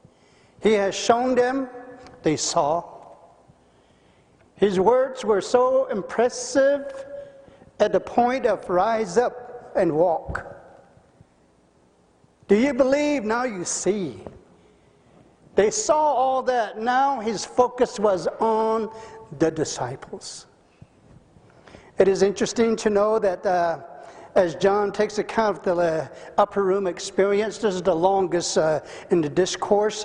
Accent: American